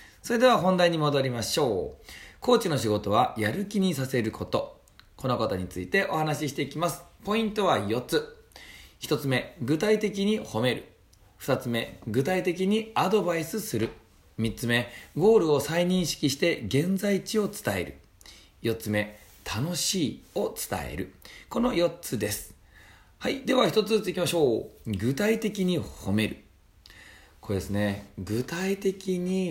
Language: Japanese